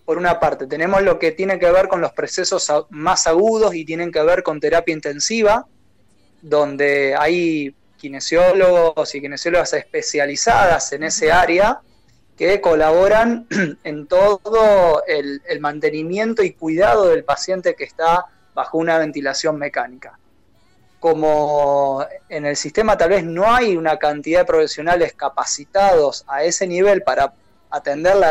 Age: 20-39